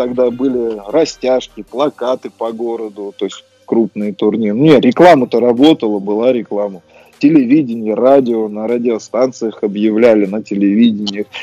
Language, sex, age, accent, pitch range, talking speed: Russian, male, 20-39, native, 105-130 Hz, 115 wpm